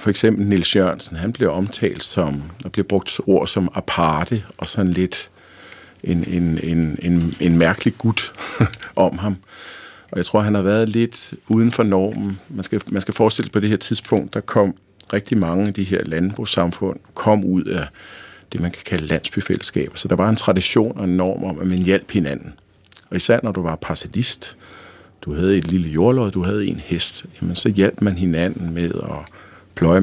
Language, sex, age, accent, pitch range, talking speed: Danish, male, 50-69, native, 90-105 Hz, 195 wpm